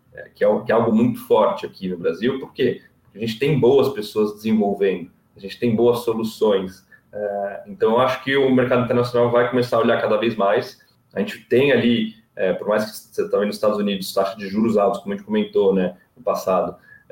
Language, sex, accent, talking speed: Portuguese, male, Brazilian, 200 wpm